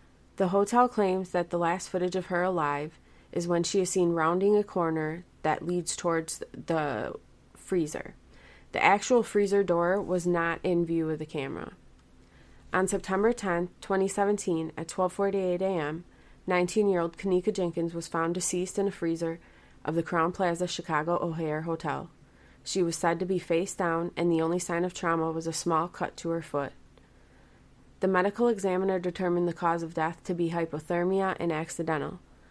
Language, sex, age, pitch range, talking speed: English, female, 20-39, 160-185 Hz, 165 wpm